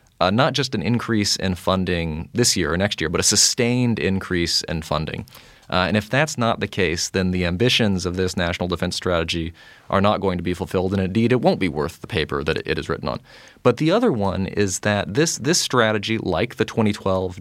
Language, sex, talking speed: English, male, 225 wpm